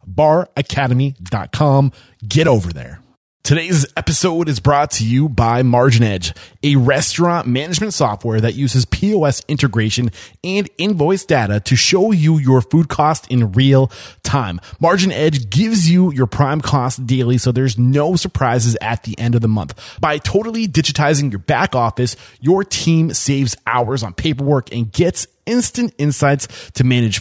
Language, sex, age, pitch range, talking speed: English, male, 20-39, 120-155 Hz, 150 wpm